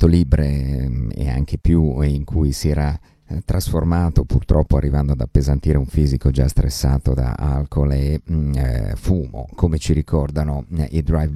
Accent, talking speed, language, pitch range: native, 150 wpm, Italian, 75-85 Hz